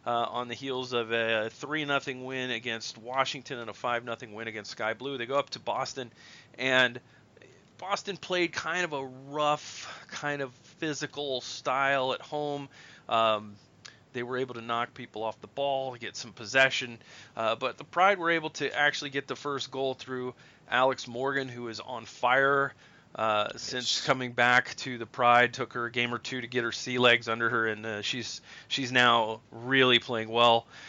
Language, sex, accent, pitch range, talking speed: English, male, American, 115-140 Hz, 190 wpm